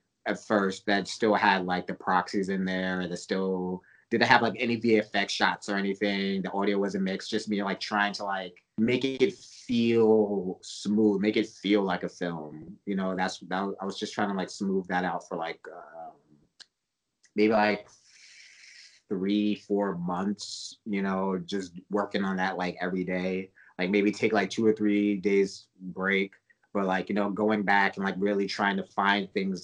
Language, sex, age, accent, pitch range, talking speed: English, male, 30-49, American, 95-110 Hz, 190 wpm